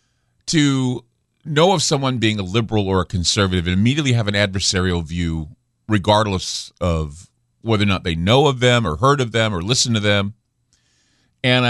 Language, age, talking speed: English, 40-59, 175 wpm